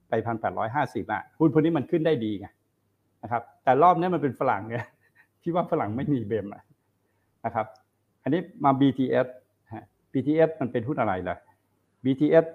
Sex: male